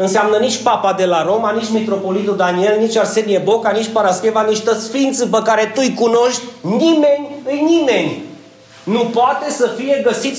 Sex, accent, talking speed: male, native, 160 wpm